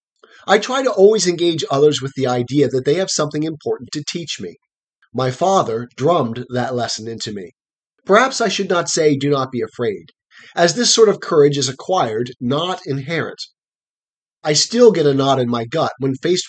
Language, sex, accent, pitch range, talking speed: English, male, American, 130-175 Hz, 190 wpm